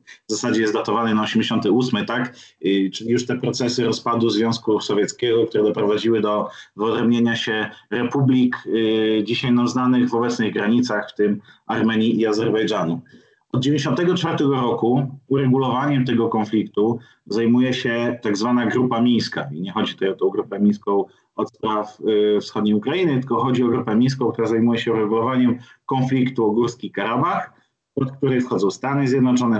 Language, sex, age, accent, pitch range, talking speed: Polish, male, 30-49, native, 110-135 Hz, 145 wpm